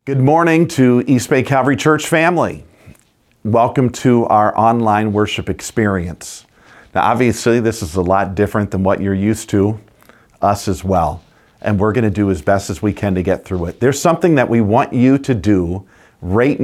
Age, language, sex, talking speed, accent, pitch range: 40-59, English, male, 190 wpm, American, 95-120 Hz